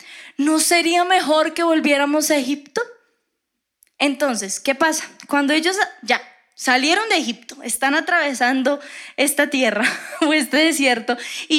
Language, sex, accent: Spanish, female, Colombian